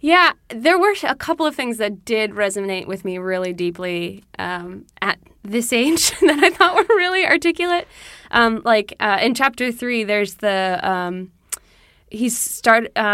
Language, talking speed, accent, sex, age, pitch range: English, 160 wpm, American, female, 20-39, 185-230 Hz